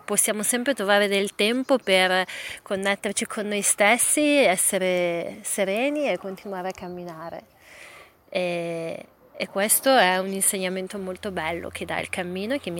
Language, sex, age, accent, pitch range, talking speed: Italian, female, 30-49, native, 185-215 Hz, 145 wpm